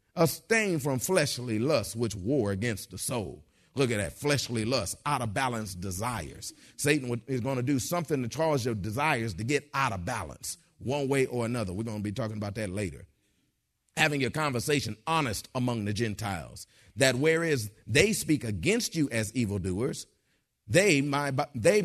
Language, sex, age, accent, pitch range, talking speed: English, male, 40-59, American, 115-145 Hz, 170 wpm